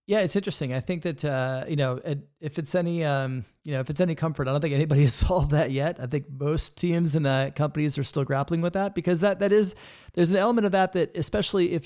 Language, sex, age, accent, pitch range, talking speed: English, male, 30-49, American, 140-170 Hz, 260 wpm